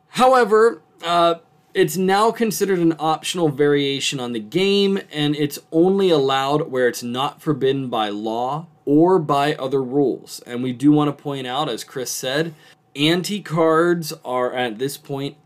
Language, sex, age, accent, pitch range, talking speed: English, male, 20-39, American, 125-160 Hz, 155 wpm